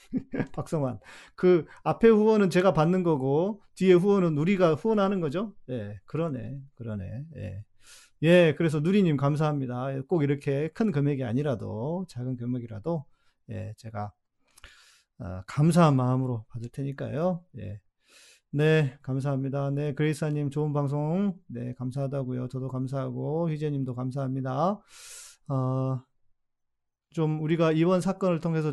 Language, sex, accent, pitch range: Korean, male, native, 120-155 Hz